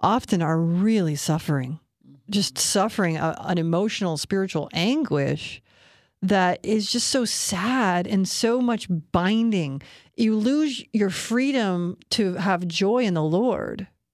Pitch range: 170-220 Hz